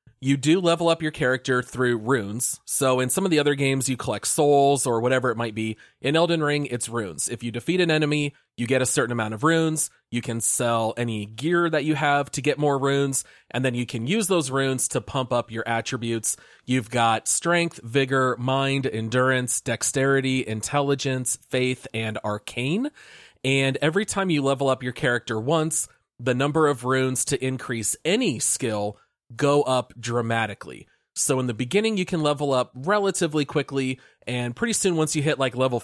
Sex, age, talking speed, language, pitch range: male, 30-49, 190 wpm, English, 120-150 Hz